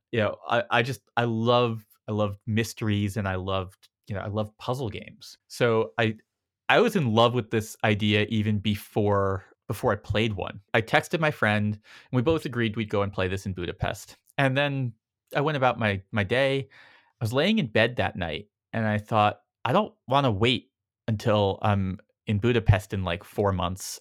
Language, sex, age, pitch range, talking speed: English, male, 30-49, 105-130 Hz, 200 wpm